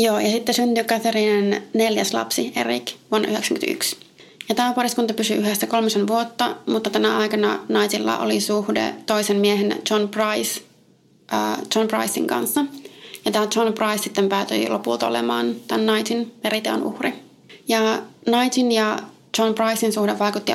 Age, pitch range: 30-49, 200-230 Hz